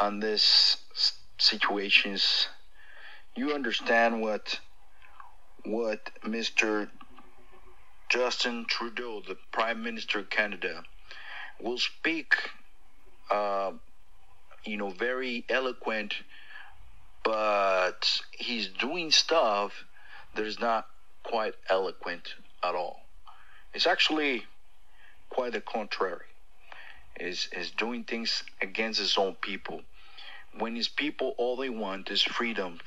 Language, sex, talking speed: English, male, 100 wpm